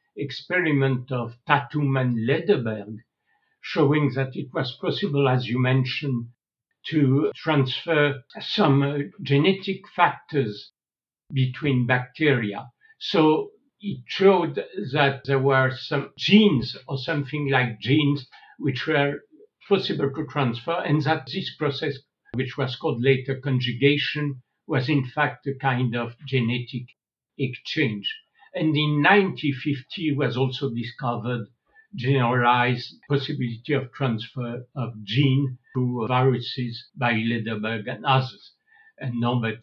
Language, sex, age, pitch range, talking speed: English, male, 60-79, 125-150 Hz, 110 wpm